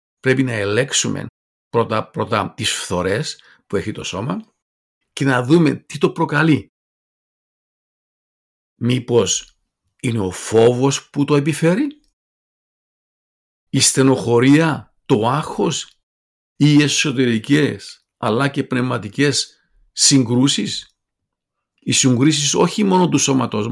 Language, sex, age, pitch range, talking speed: Greek, male, 50-69, 115-145 Hz, 100 wpm